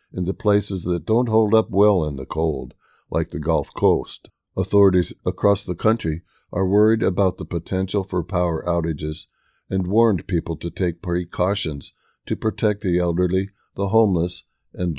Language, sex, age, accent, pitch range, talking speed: English, male, 50-69, American, 85-100 Hz, 160 wpm